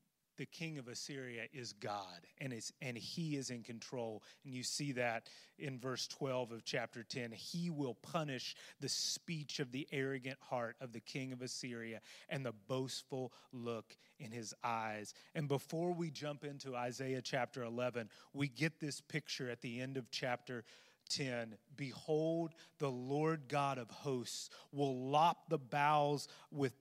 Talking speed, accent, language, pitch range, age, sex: 165 wpm, American, English, 120-150 Hz, 30-49, male